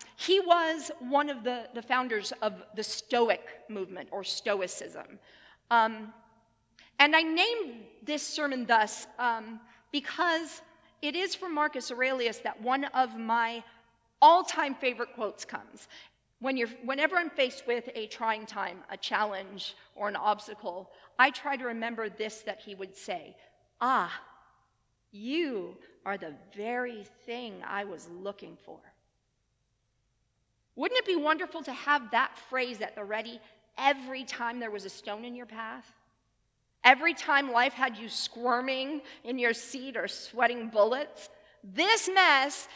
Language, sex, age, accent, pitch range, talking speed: English, female, 40-59, American, 220-290 Hz, 140 wpm